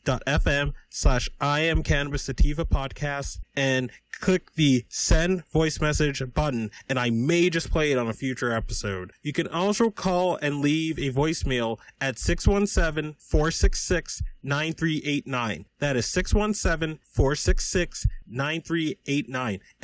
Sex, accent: male, American